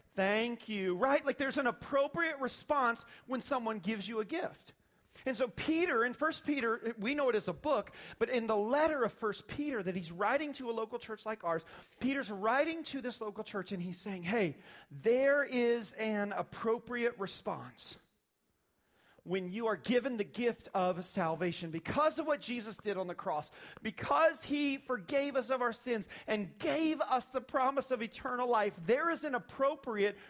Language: English